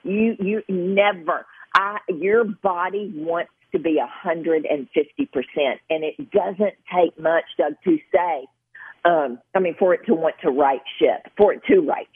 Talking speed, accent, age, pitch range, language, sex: 180 wpm, American, 50-69, 155-215 Hz, English, female